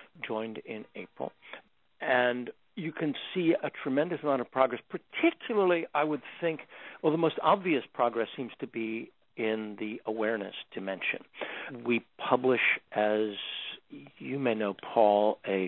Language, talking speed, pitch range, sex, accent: English, 140 wpm, 105-125 Hz, male, American